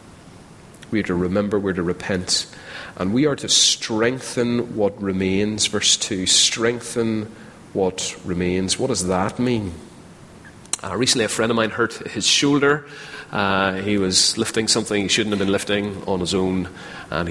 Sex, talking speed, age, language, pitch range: male, 165 wpm, 30-49, English, 95-115 Hz